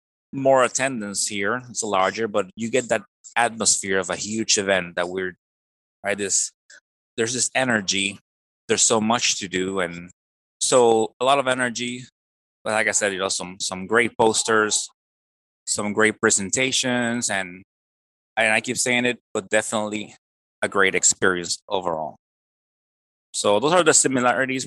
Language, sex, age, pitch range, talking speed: English, male, 20-39, 95-120 Hz, 155 wpm